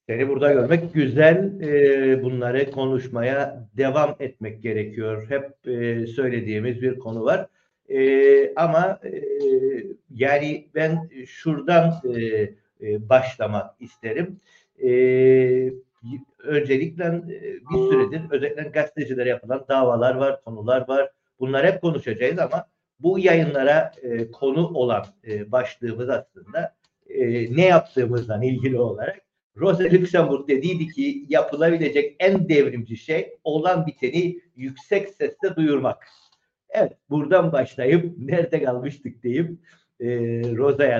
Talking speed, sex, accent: 95 wpm, male, native